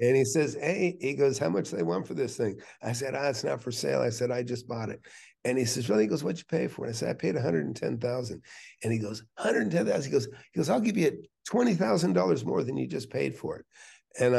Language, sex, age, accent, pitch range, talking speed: English, male, 50-69, American, 105-125 Hz, 260 wpm